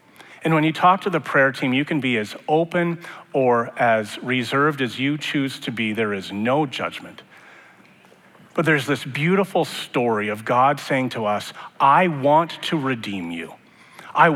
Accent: American